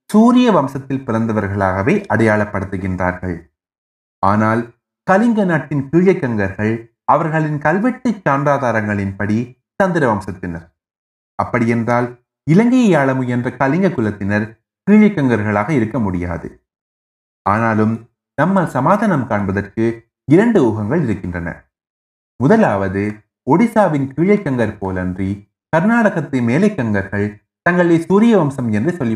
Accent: native